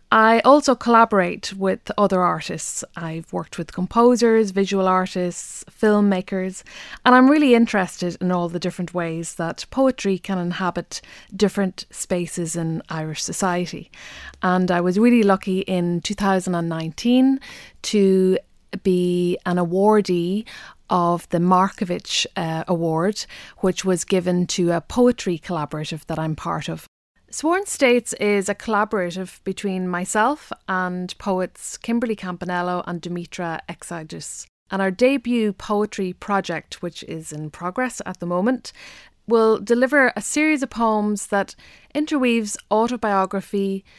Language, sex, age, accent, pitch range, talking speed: English, female, 30-49, Irish, 175-215 Hz, 125 wpm